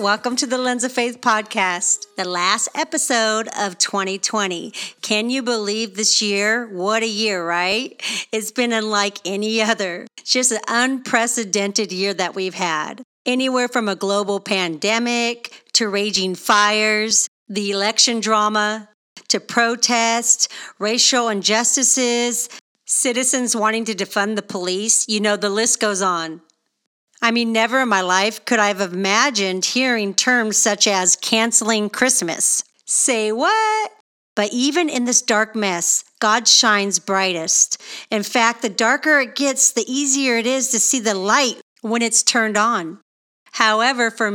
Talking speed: 145 wpm